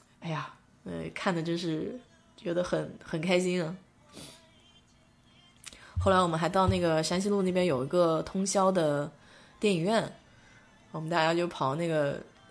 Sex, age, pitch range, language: female, 20-39, 155-185 Hz, Chinese